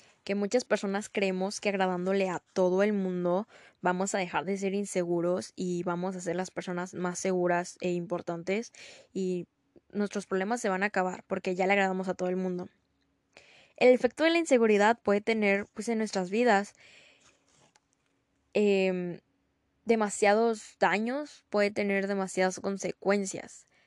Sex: female